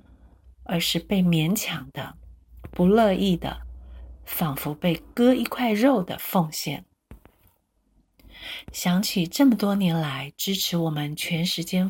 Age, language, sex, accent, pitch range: 50-69, Chinese, female, native, 150-210 Hz